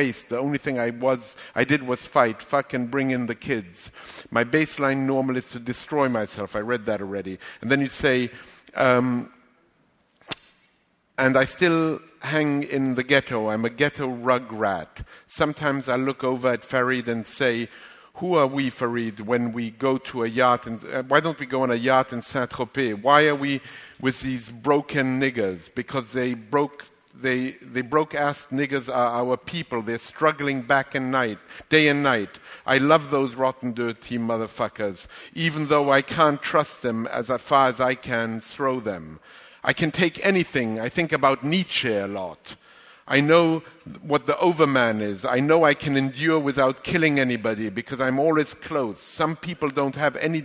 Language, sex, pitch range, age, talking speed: English, male, 120-145 Hz, 50-69, 180 wpm